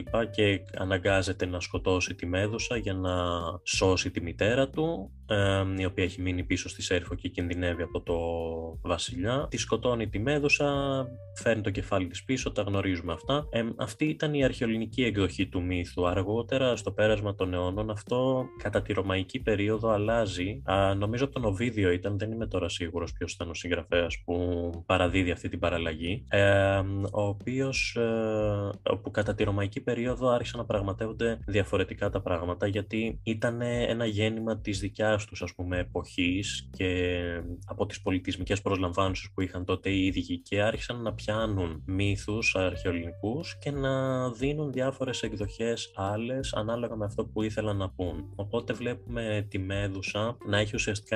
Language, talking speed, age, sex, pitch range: Greek, 150 wpm, 20-39, male, 90-110 Hz